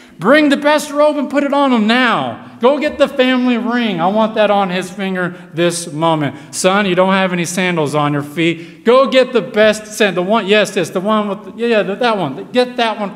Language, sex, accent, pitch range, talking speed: English, male, American, 165-230 Hz, 230 wpm